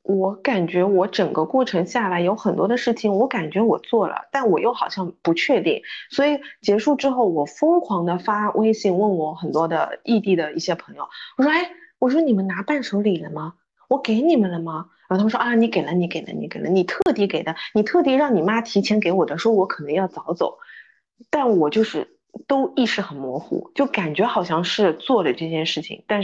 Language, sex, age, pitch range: Chinese, female, 20-39, 180-250 Hz